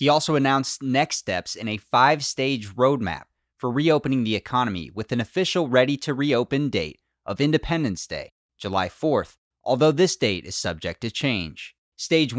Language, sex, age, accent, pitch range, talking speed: English, male, 30-49, American, 100-135 Hz, 165 wpm